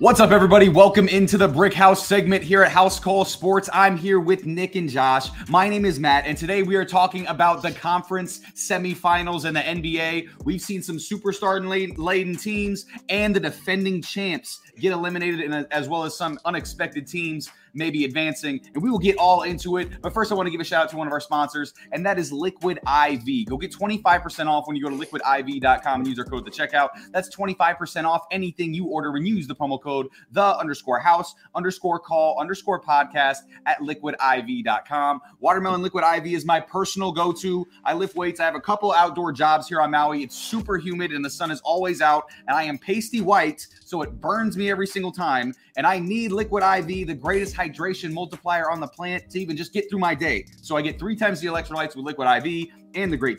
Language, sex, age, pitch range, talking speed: English, male, 20-39, 150-190 Hz, 210 wpm